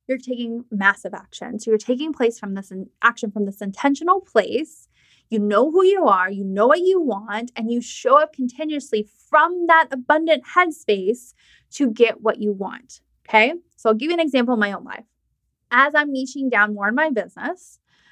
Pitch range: 210-275 Hz